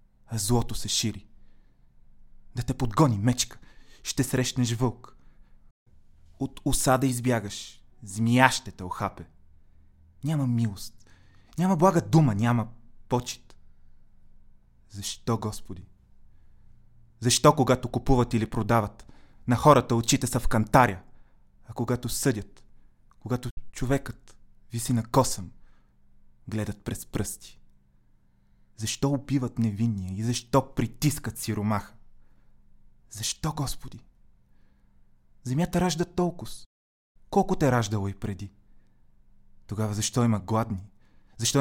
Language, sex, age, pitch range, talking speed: Bulgarian, male, 30-49, 80-130 Hz, 105 wpm